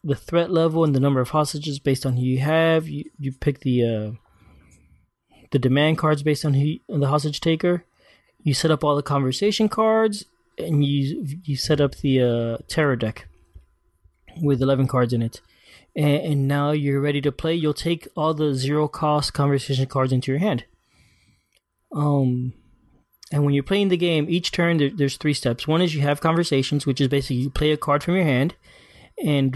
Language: English